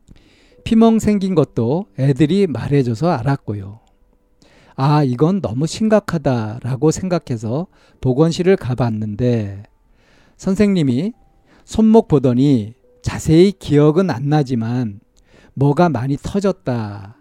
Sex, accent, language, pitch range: male, native, Korean, 120-180 Hz